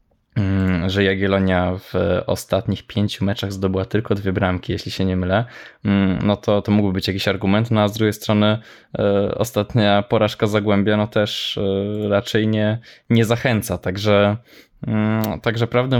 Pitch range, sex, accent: 95-110 Hz, male, native